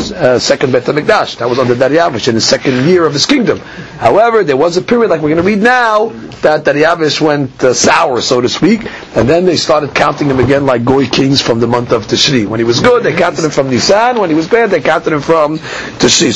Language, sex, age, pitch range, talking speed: English, male, 50-69, 145-230 Hz, 240 wpm